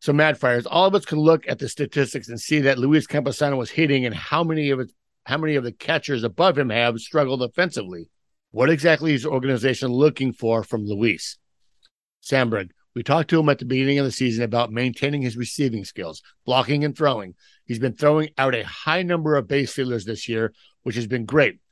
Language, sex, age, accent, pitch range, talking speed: English, male, 60-79, American, 120-150 Hz, 210 wpm